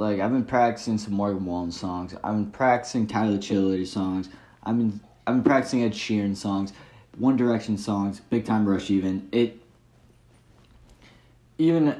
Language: English